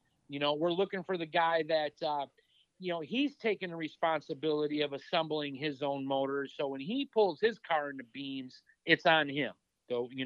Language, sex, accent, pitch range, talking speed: English, male, American, 150-205 Hz, 195 wpm